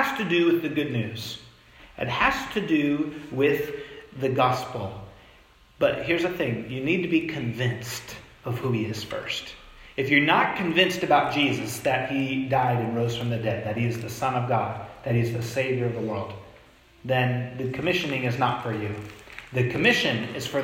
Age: 40-59